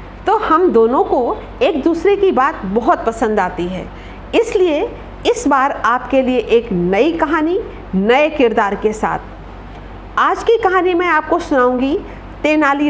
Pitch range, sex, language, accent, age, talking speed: 235-335 Hz, female, Hindi, native, 50-69, 140 wpm